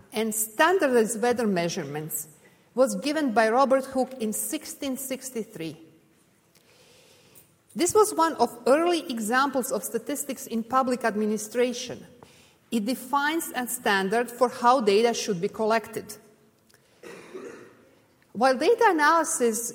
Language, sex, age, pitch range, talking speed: English, female, 50-69, 210-265 Hz, 105 wpm